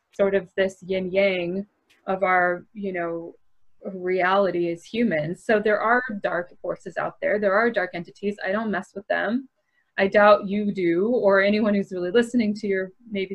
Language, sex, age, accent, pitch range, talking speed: English, female, 20-39, American, 190-225 Hz, 180 wpm